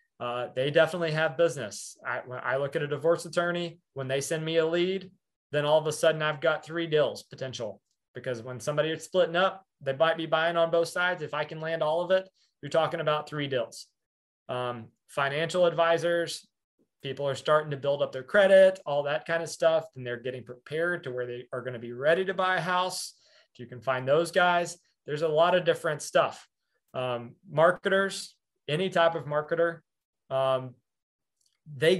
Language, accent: English, American